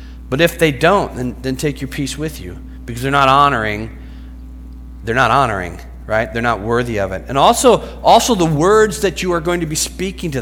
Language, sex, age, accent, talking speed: English, male, 40-59, American, 215 wpm